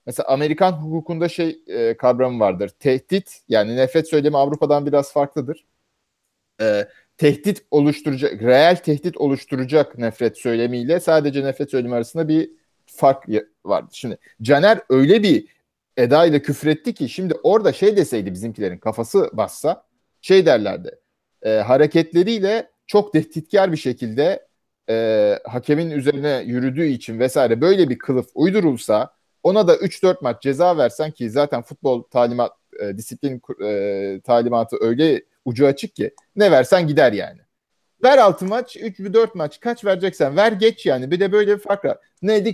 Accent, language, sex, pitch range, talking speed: Turkish, English, male, 130-195 Hz, 140 wpm